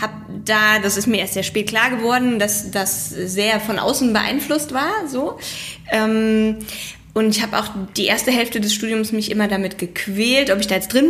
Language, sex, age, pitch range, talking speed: German, female, 10-29, 195-225 Hz, 200 wpm